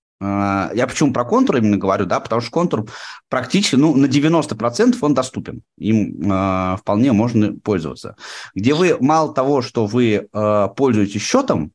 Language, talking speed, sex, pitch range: Russian, 145 wpm, male, 100-125 Hz